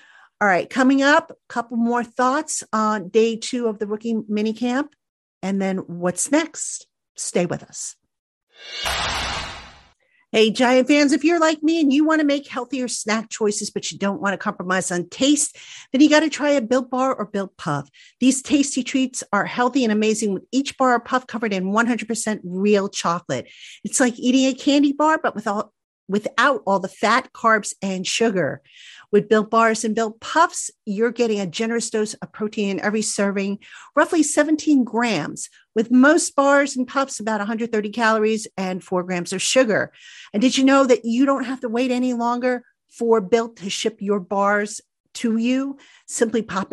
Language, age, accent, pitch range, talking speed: English, 50-69, American, 200-265 Hz, 185 wpm